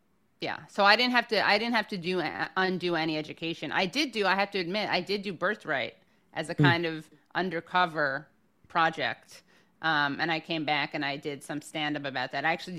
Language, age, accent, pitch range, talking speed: English, 30-49, American, 155-190 Hz, 215 wpm